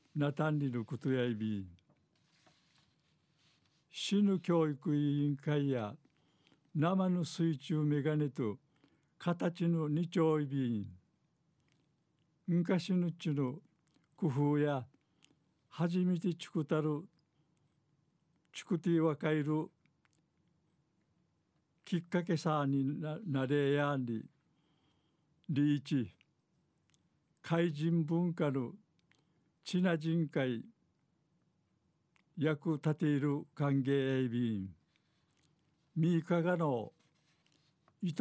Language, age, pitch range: Japanese, 60-79, 140-165 Hz